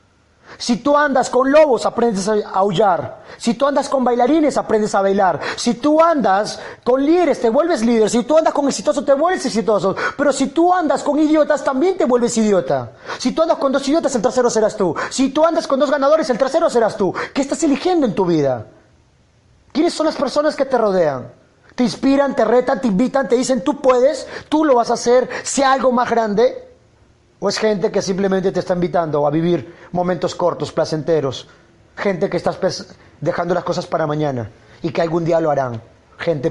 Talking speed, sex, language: 200 wpm, male, Spanish